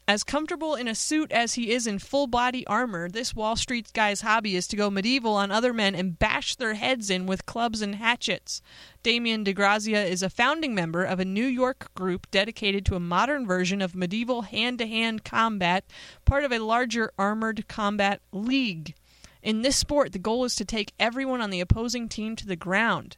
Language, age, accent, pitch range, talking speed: English, 30-49, American, 190-245 Hz, 195 wpm